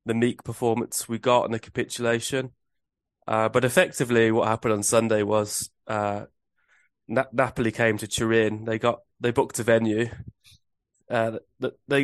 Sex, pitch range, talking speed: male, 110-125 Hz, 150 wpm